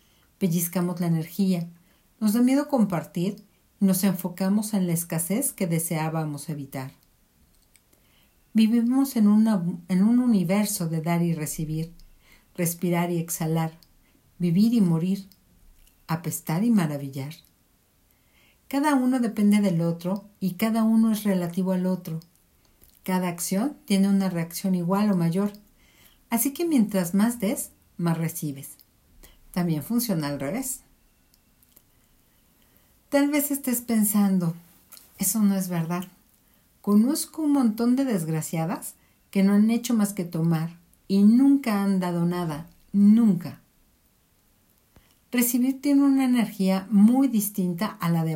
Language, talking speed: Spanish, 125 wpm